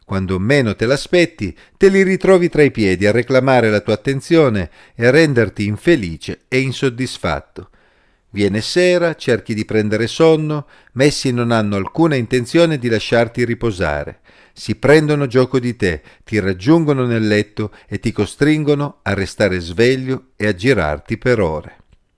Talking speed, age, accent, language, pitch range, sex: 150 wpm, 40-59, native, Italian, 100-140 Hz, male